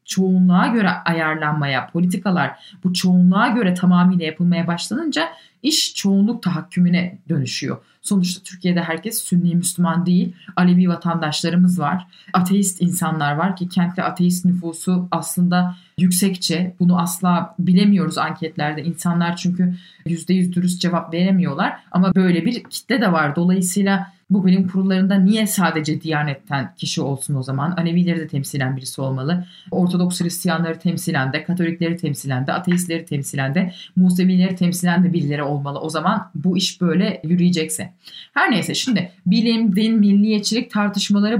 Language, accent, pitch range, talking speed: Turkish, native, 170-195 Hz, 130 wpm